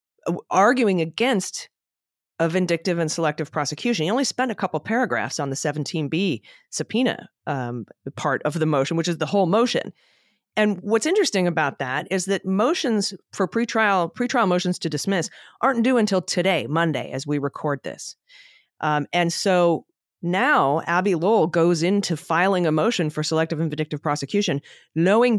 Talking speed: 160 wpm